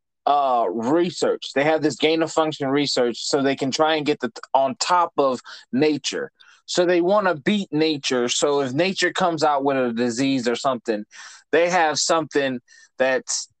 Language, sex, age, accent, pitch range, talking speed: English, male, 20-39, American, 130-165 Hz, 180 wpm